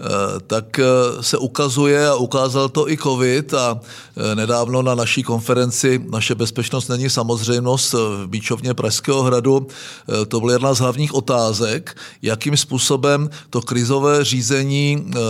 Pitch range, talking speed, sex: 120-145 Hz, 125 wpm, male